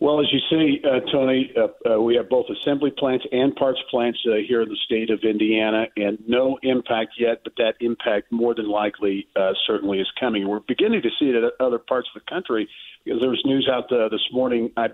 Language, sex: English, male